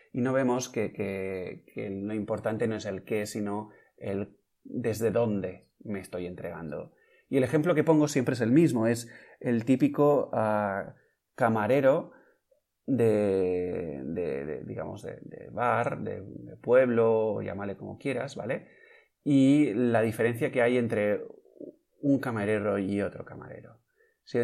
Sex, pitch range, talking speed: male, 100-125 Hz, 135 wpm